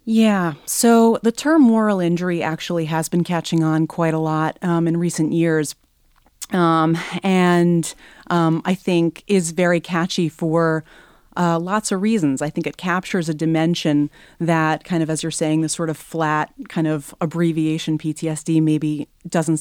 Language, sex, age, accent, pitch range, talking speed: English, female, 30-49, American, 160-180 Hz, 160 wpm